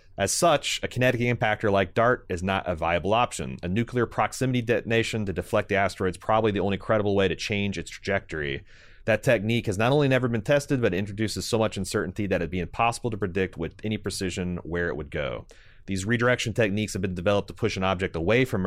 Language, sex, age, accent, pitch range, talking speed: English, male, 30-49, American, 90-110 Hz, 220 wpm